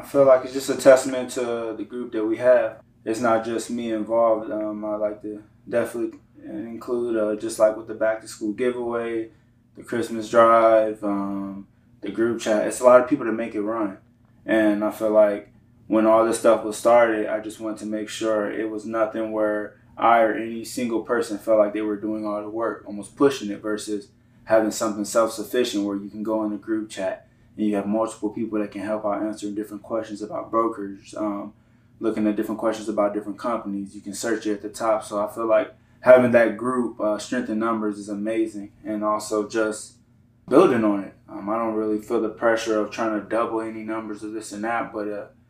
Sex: male